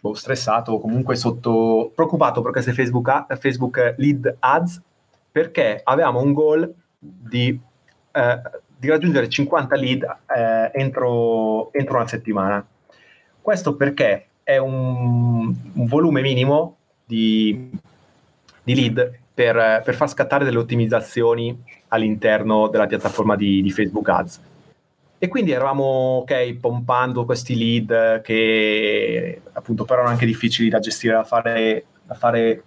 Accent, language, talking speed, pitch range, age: native, Italian, 125 wpm, 115-140 Hz, 30-49